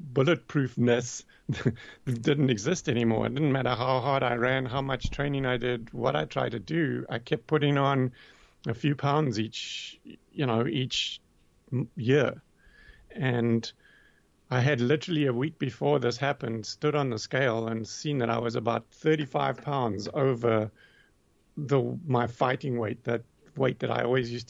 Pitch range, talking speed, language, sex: 115-140 Hz, 160 wpm, English, male